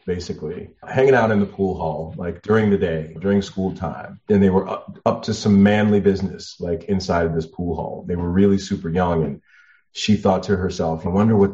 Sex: male